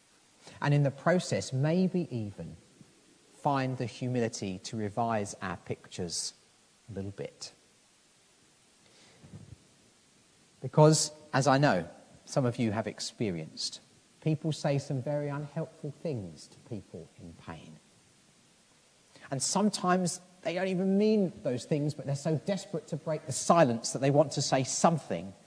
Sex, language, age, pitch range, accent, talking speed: male, English, 40-59, 125-180 Hz, British, 135 wpm